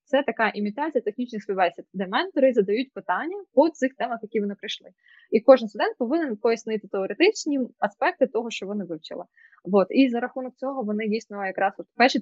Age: 20-39